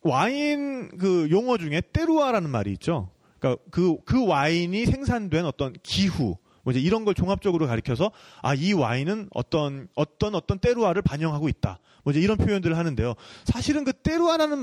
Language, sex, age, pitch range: Korean, male, 30-49, 125-205 Hz